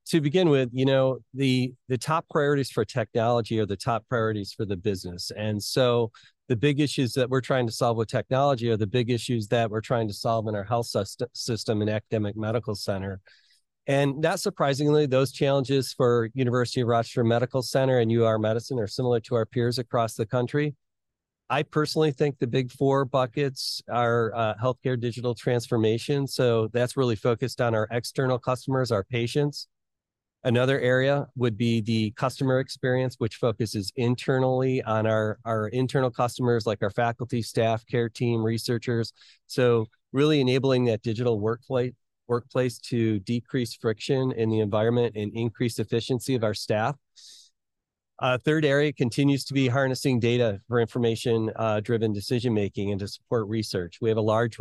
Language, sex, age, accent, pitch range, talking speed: English, male, 40-59, American, 110-130 Hz, 165 wpm